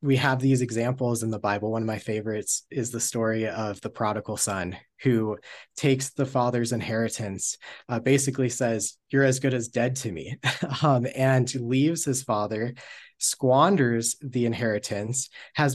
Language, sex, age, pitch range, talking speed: English, male, 20-39, 110-130 Hz, 160 wpm